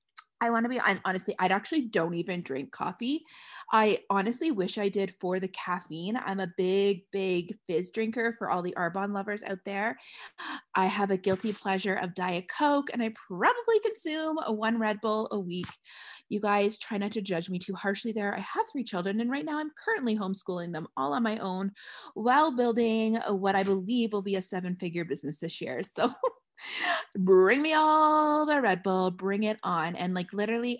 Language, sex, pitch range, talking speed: English, female, 190-235 Hz, 195 wpm